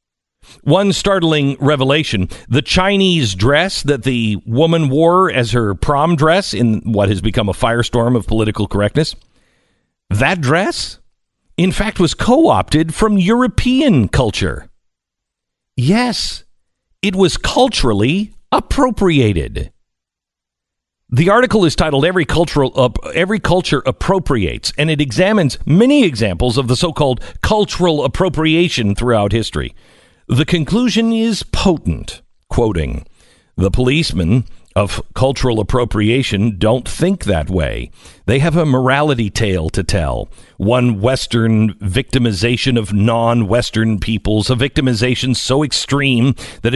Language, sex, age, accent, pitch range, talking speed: English, male, 50-69, American, 115-170 Hz, 120 wpm